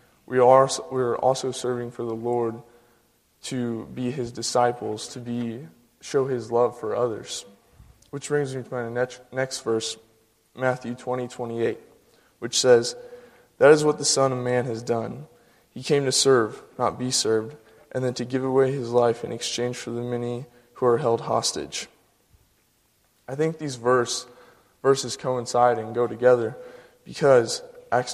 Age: 20-39